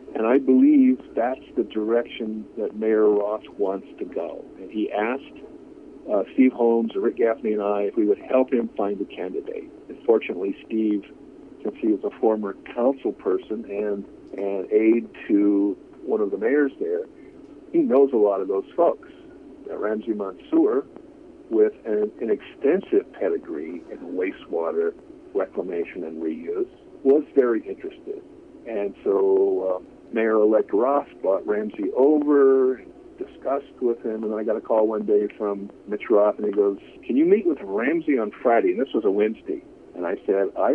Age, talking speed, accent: 50-69, 165 wpm, American